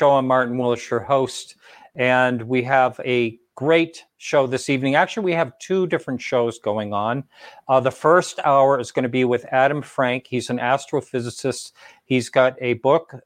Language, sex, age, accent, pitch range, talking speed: English, male, 50-69, American, 120-140 Hz, 175 wpm